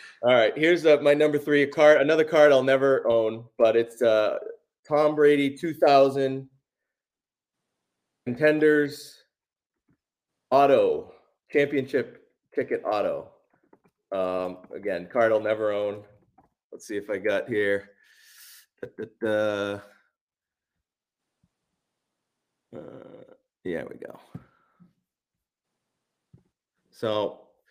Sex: male